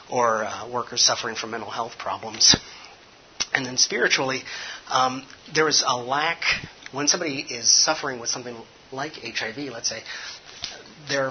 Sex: male